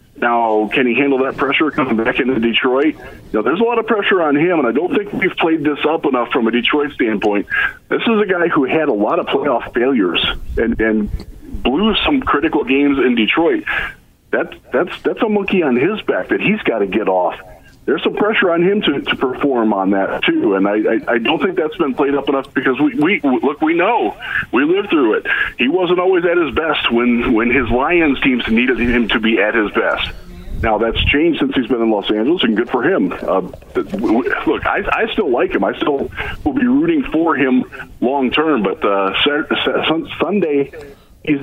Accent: American